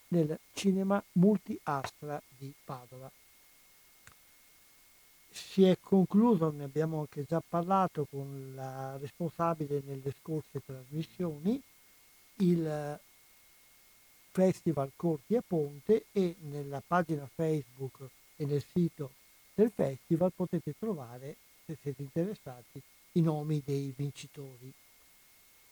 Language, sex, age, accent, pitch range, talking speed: Italian, male, 60-79, native, 145-185 Hz, 100 wpm